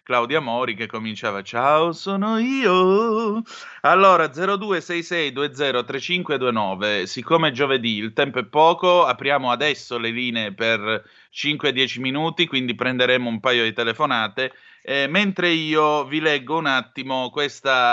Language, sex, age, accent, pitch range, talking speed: Italian, male, 30-49, native, 120-150 Hz, 120 wpm